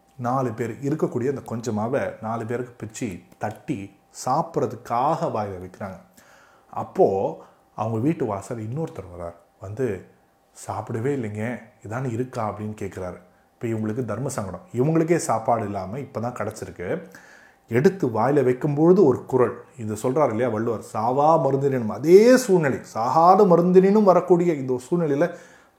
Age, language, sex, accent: 30-49, Tamil, male, native